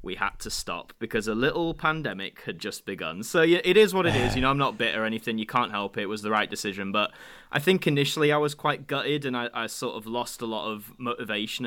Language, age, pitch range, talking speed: English, 20-39, 110-150 Hz, 270 wpm